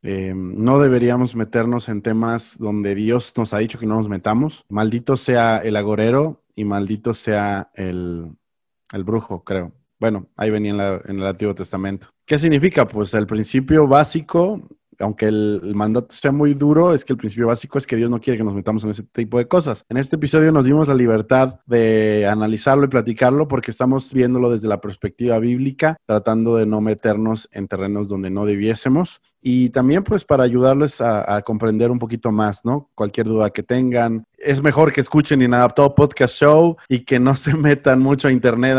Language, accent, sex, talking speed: Spanish, Mexican, male, 190 wpm